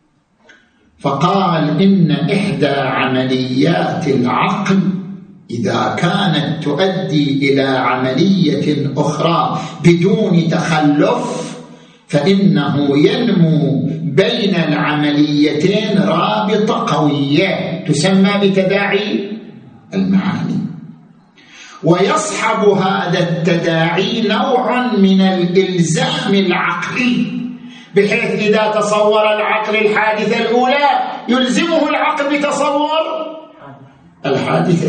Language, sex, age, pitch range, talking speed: Arabic, male, 50-69, 165-210 Hz, 65 wpm